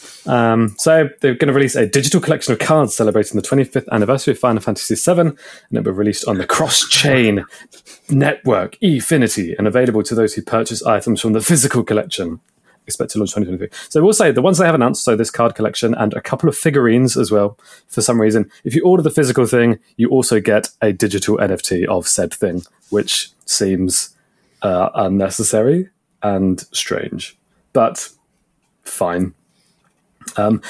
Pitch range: 105-130 Hz